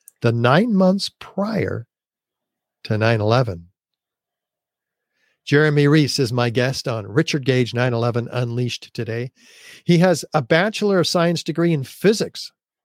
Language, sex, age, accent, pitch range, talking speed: English, male, 50-69, American, 120-165 Hz, 120 wpm